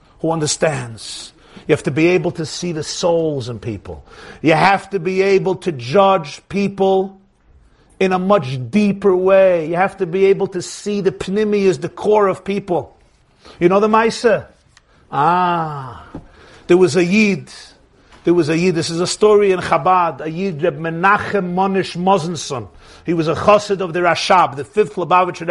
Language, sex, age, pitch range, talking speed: English, male, 50-69, 175-215 Hz, 175 wpm